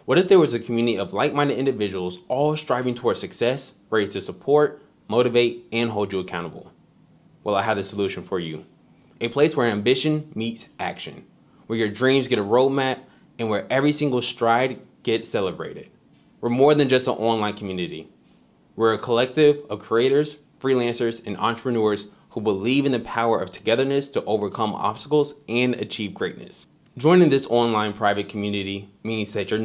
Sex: male